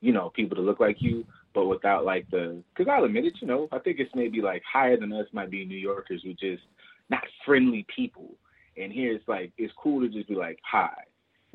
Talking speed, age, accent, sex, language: 240 wpm, 20-39, American, male, English